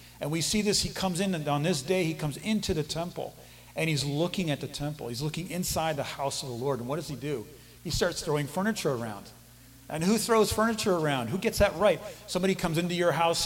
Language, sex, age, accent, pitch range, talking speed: English, male, 40-59, American, 125-170 Hz, 240 wpm